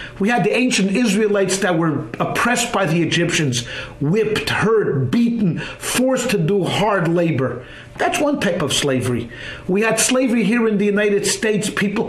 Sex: male